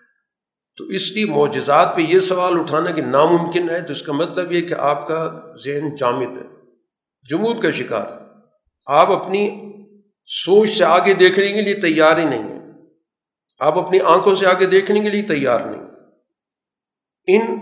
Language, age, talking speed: Urdu, 50-69, 165 wpm